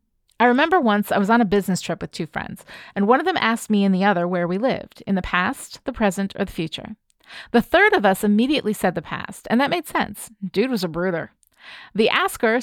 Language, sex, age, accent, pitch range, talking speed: English, female, 30-49, American, 195-250 Hz, 240 wpm